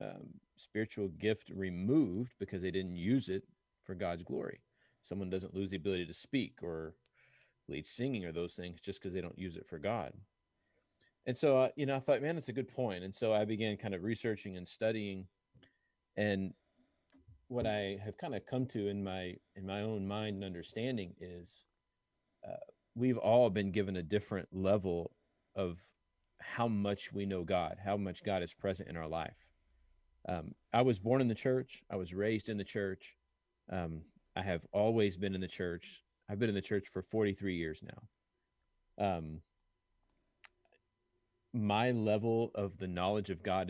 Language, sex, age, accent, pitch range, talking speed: English, male, 40-59, American, 90-105 Hz, 180 wpm